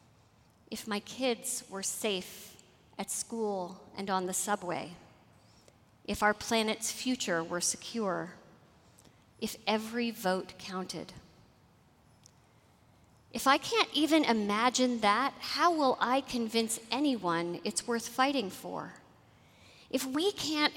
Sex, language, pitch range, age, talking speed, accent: female, English, 195-260 Hz, 40-59, 115 wpm, American